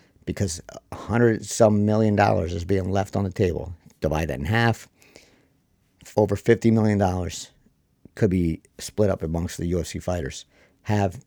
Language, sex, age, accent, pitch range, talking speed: English, male, 50-69, American, 95-110 Hz, 155 wpm